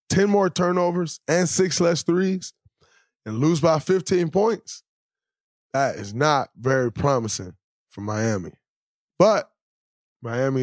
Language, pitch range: English, 115-160 Hz